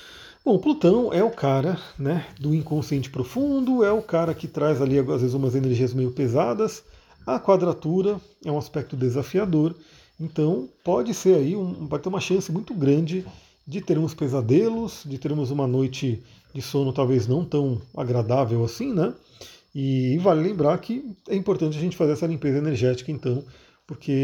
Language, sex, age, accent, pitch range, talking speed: Portuguese, male, 40-59, Brazilian, 130-175 Hz, 170 wpm